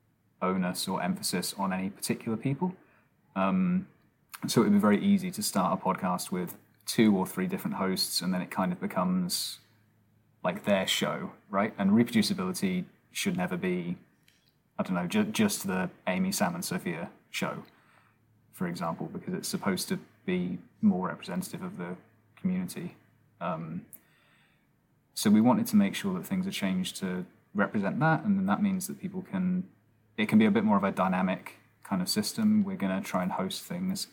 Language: English